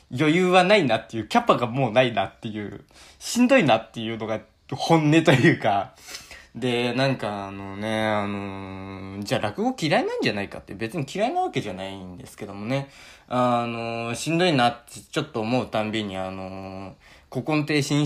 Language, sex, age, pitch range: Japanese, male, 20-39, 105-145 Hz